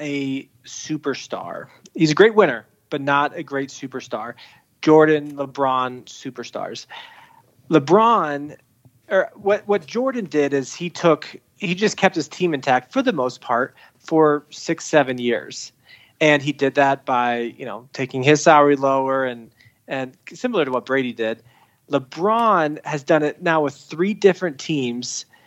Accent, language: American, English